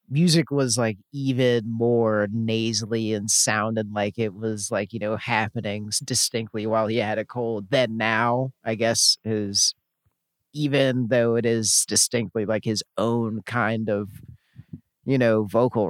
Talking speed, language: 145 wpm, English